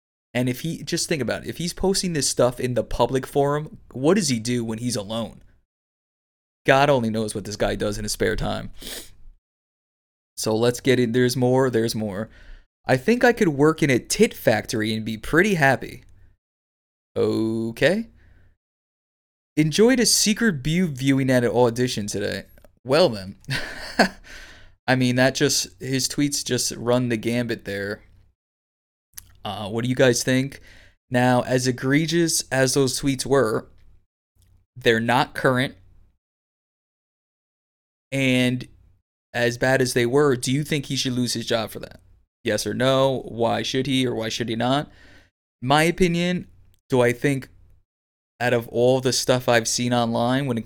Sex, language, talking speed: male, English, 160 wpm